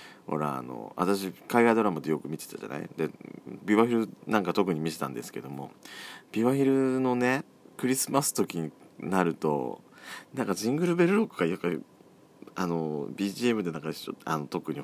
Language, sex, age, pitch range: Japanese, male, 40-59, 80-115 Hz